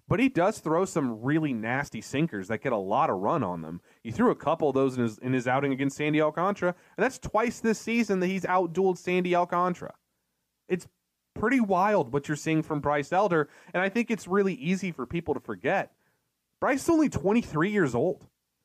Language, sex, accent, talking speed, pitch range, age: English, male, American, 210 wpm, 140-200 Hz, 30-49